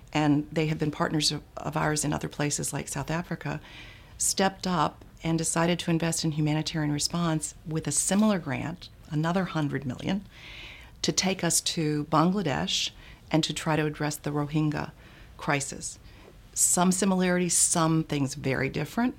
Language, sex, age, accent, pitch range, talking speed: English, female, 50-69, American, 145-170 Hz, 145 wpm